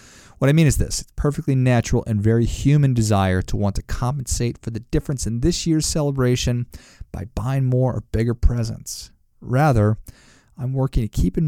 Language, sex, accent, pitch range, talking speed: English, male, American, 105-130 Hz, 185 wpm